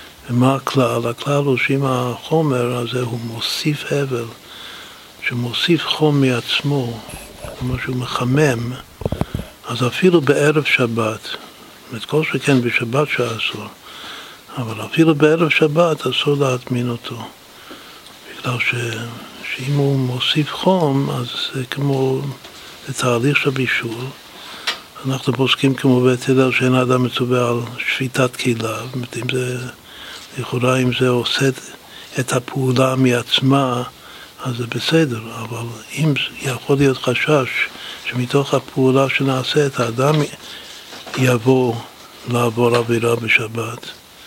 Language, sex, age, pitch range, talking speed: Hebrew, male, 60-79, 120-140 Hz, 115 wpm